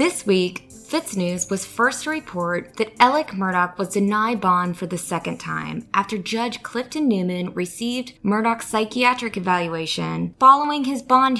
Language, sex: English, female